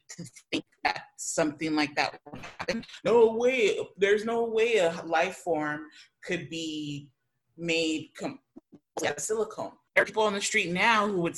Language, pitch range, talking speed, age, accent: English, 140-175 Hz, 165 wpm, 30-49, American